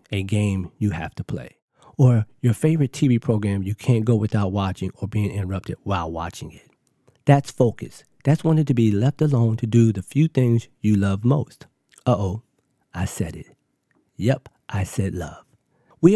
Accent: American